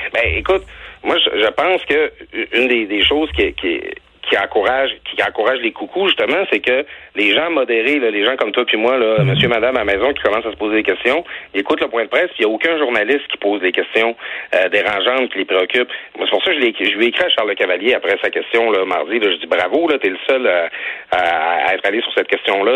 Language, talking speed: French, 255 wpm